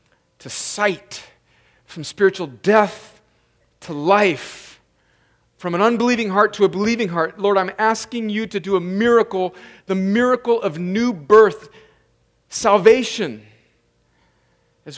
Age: 40-59